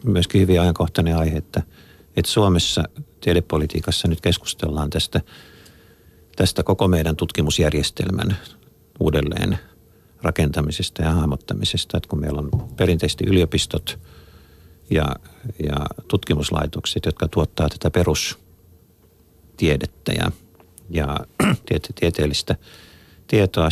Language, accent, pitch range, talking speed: Finnish, native, 80-95 Hz, 90 wpm